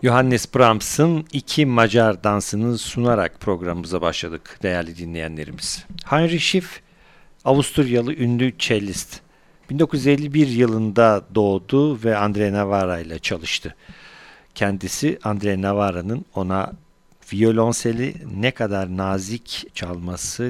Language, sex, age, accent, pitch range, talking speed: Turkish, male, 50-69, native, 95-125 Hz, 95 wpm